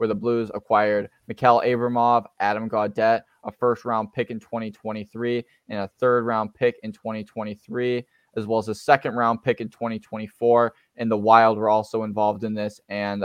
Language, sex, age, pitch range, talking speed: English, male, 10-29, 105-120 Hz, 165 wpm